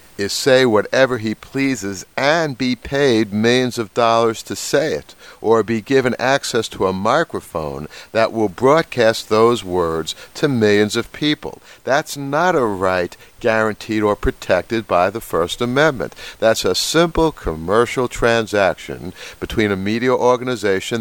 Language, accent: English, American